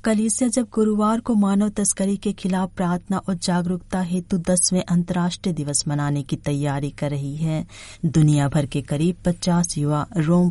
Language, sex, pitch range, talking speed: Hindi, female, 145-180 Hz, 160 wpm